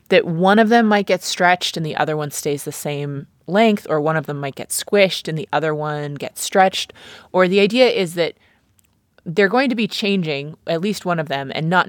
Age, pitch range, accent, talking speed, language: 20-39, 150-190 Hz, American, 225 wpm, English